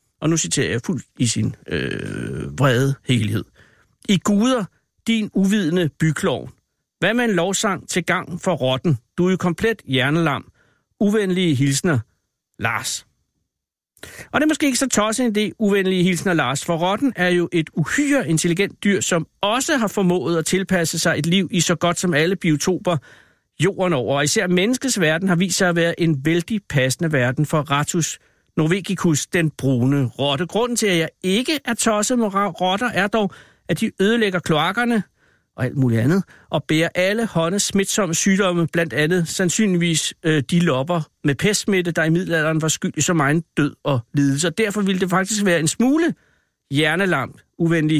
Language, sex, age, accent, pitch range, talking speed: Danish, male, 60-79, native, 150-200 Hz, 175 wpm